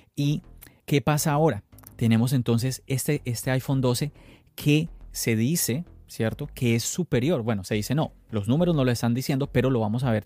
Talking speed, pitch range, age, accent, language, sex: 185 wpm, 115-145 Hz, 30-49, Colombian, Spanish, male